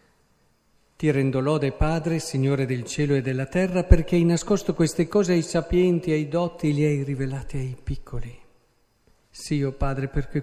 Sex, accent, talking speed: male, native, 175 wpm